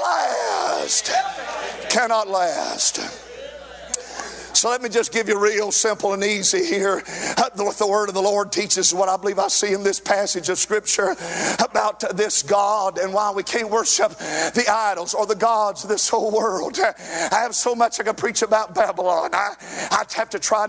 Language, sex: English, male